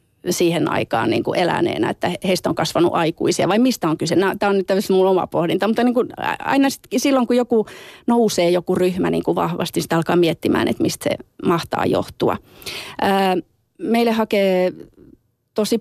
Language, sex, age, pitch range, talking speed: Finnish, female, 30-49, 175-210 Hz, 170 wpm